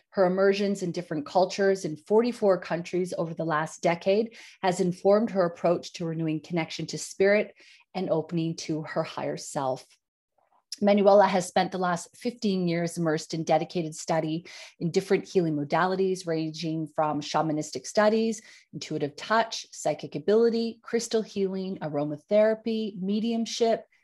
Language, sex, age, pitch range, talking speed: English, female, 30-49, 165-225 Hz, 135 wpm